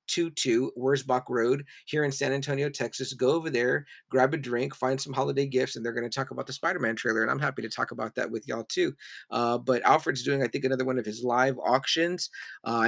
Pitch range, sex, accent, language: 115-140 Hz, male, American, English